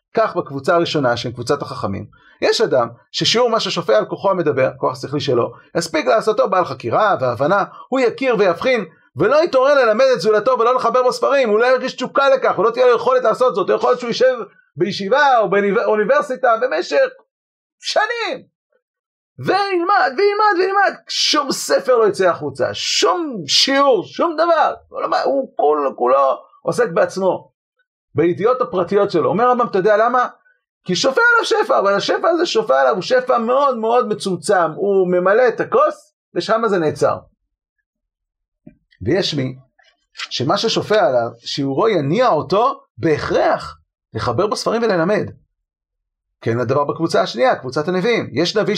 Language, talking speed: Hebrew, 145 wpm